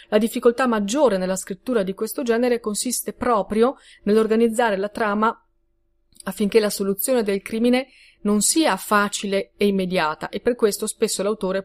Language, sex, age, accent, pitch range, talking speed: Italian, female, 30-49, native, 195-240 Hz, 145 wpm